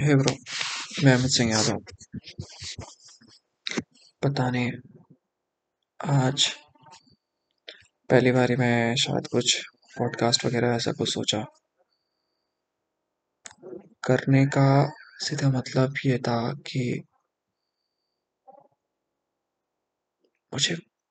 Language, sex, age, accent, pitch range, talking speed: Hindi, male, 20-39, native, 115-140 Hz, 70 wpm